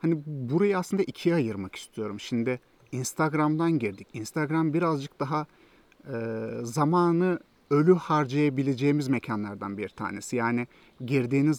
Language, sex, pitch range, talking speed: Turkish, male, 115-160 Hz, 110 wpm